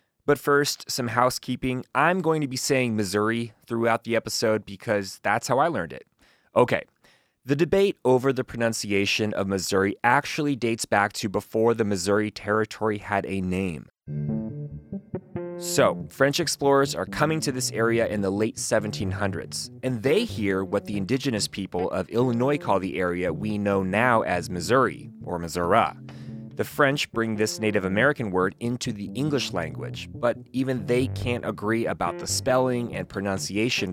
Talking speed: 160 wpm